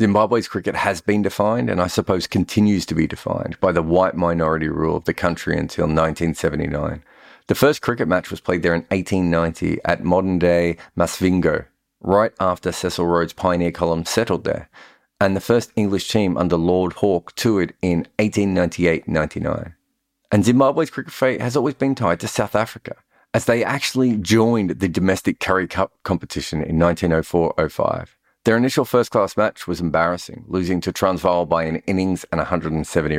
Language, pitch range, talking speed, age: English, 85-105 Hz, 160 wpm, 40-59